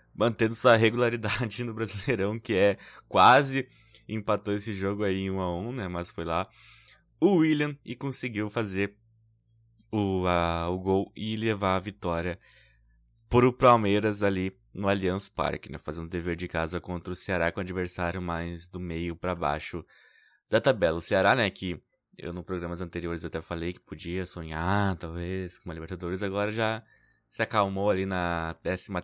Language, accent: Portuguese, Brazilian